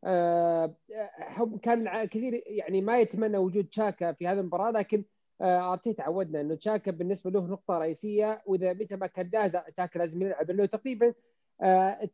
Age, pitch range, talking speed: 30-49, 175-220 Hz, 155 wpm